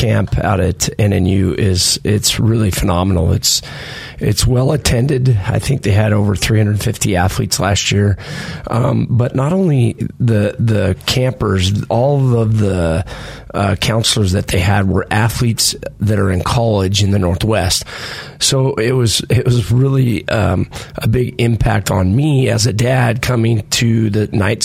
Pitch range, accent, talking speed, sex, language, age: 105-125 Hz, American, 155 wpm, male, English, 30-49